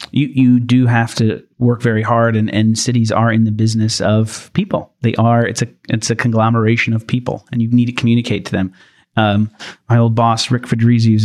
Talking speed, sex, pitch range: 215 wpm, male, 110-125 Hz